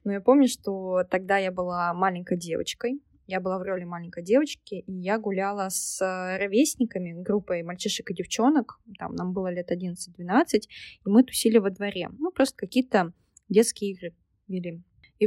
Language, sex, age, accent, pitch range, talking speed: Russian, female, 20-39, native, 185-230 Hz, 160 wpm